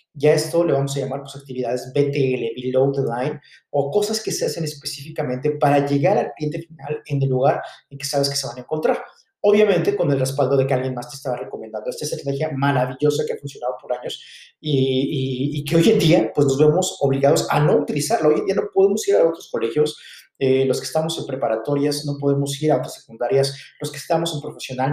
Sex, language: male, Spanish